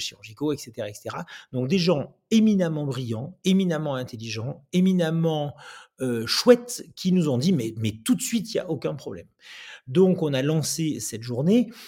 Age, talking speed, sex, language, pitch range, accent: 40-59, 165 wpm, male, French, 125-190 Hz, French